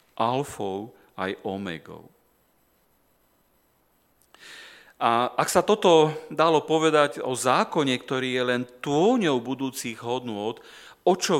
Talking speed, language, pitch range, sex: 95 wpm, Slovak, 105-150 Hz, male